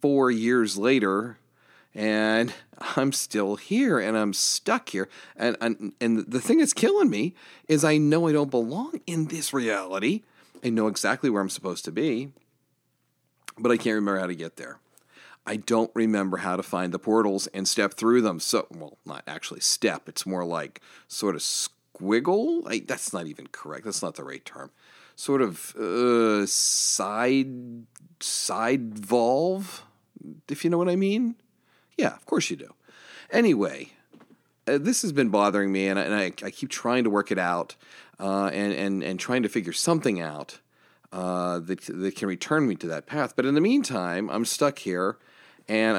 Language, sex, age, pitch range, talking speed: English, male, 40-59, 100-135 Hz, 175 wpm